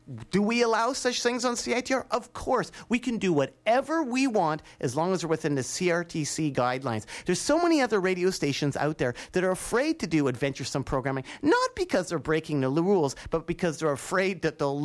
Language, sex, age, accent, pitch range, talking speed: English, male, 40-59, American, 160-250 Hz, 200 wpm